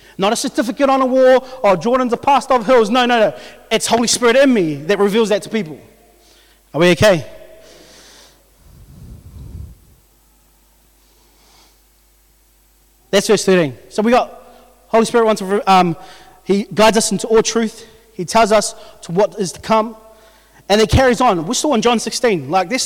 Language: English